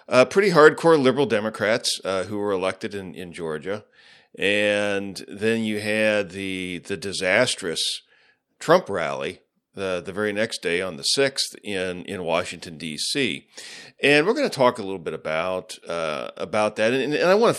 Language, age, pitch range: English, 40-59, 95-135 Hz